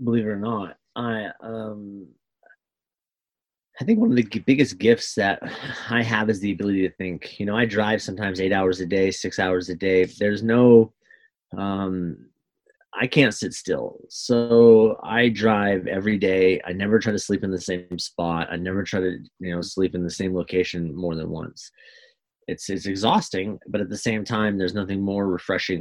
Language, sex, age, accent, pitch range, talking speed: English, male, 30-49, American, 90-110 Hz, 190 wpm